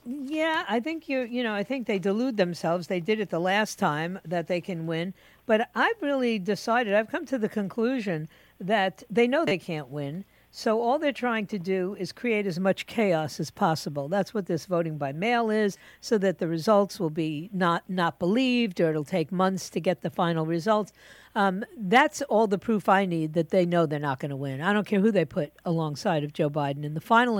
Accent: American